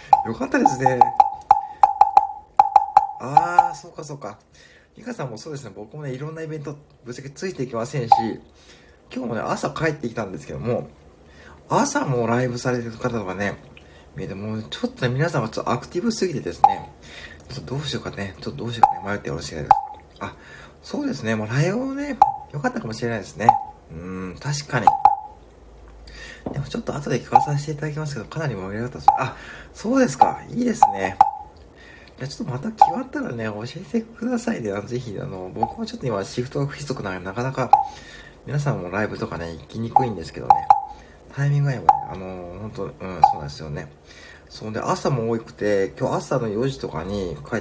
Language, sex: Japanese, male